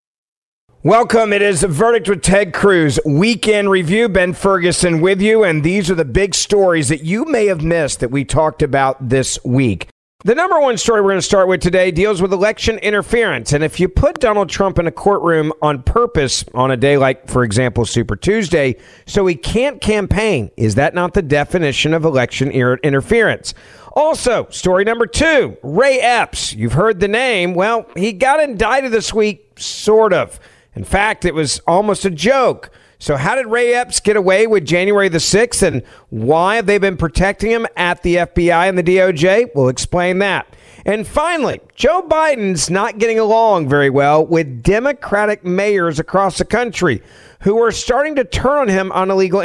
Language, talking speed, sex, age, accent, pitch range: English, 185 wpm, male, 50-69, American, 155-210 Hz